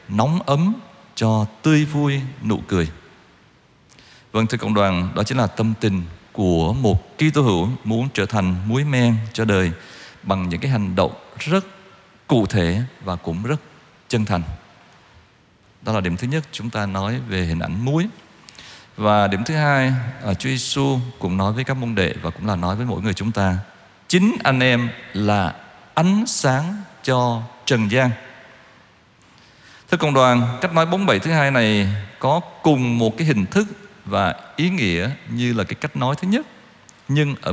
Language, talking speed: Vietnamese, 180 wpm